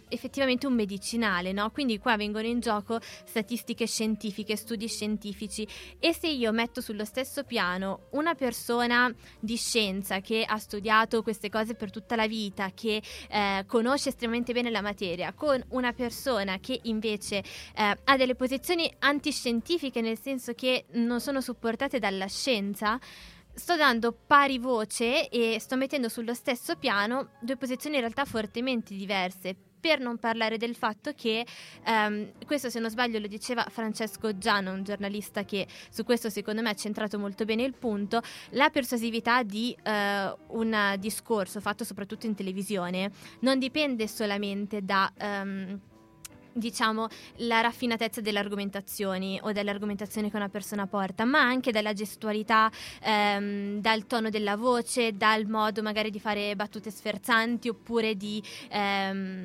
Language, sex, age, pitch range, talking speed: Italian, female, 20-39, 205-245 Hz, 145 wpm